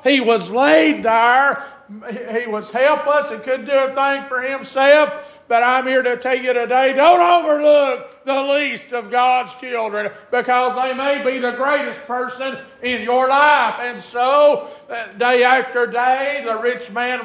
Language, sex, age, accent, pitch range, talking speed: English, male, 50-69, American, 245-290 Hz, 160 wpm